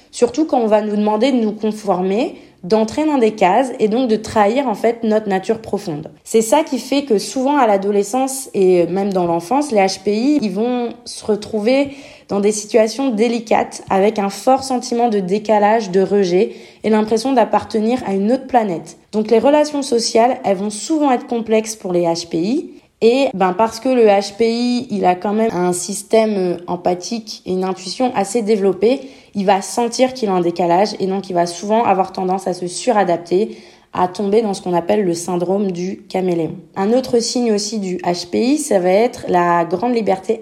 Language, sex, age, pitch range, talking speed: French, female, 20-39, 190-235 Hz, 190 wpm